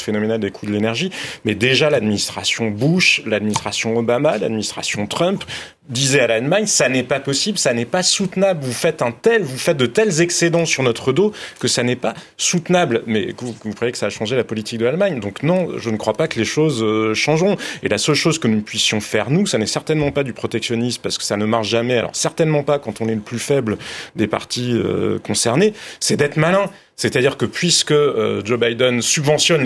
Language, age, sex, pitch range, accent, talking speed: French, 30-49, male, 110-155 Hz, French, 220 wpm